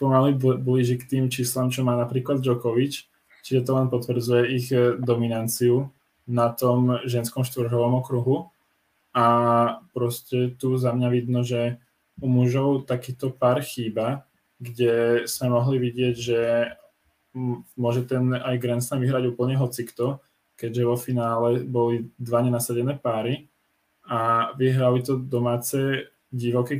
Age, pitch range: 10-29, 120-130 Hz